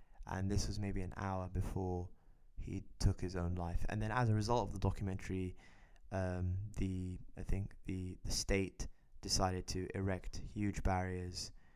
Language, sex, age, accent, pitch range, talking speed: English, male, 10-29, British, 90-105 Hz, 165 wpm